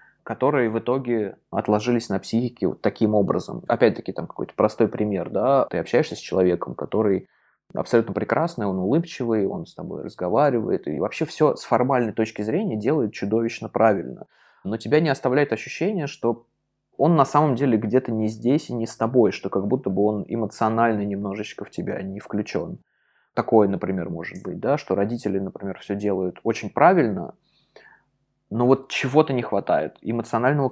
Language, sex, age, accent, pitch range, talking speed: Russian, male, 20-39, native, 110-130 Hz, 165 wpm